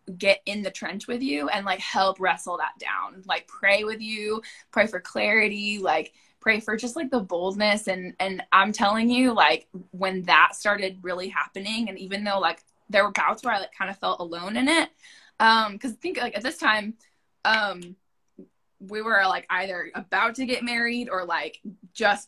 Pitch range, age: 185-230 Hz, 10-29